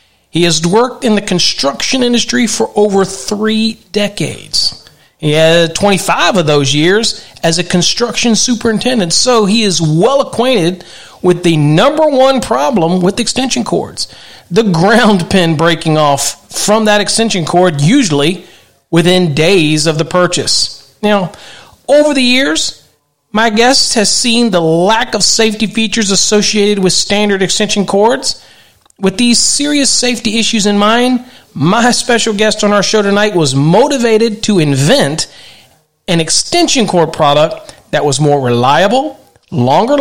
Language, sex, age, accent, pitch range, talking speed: English, male, 40-59, American, 170-235 Hz, 140 wpm